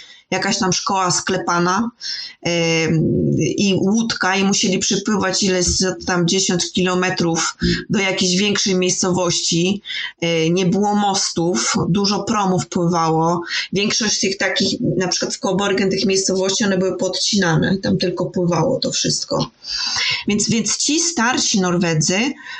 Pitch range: 180-220 Hz